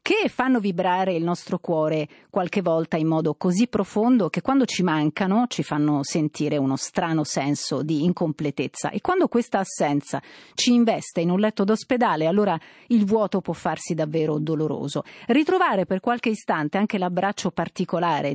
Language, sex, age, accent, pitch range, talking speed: Italian, female, 40-59, native, 165-220 Hz, 155 wpm